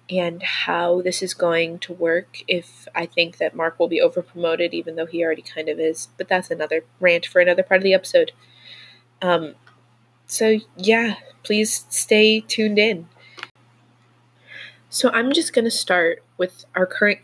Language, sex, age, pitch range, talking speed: English, female, 20-39, 160-190 Hz, 165 wpm